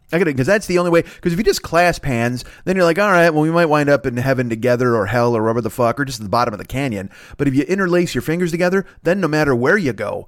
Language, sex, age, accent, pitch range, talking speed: English, male, 30-49, American, 120-155 Hz, 310 wpm